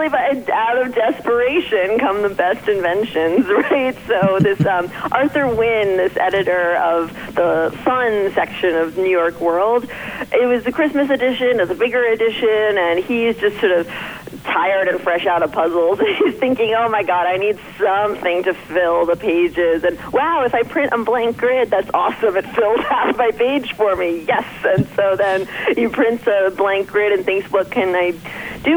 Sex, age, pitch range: female, 40-59, 175-245 Hz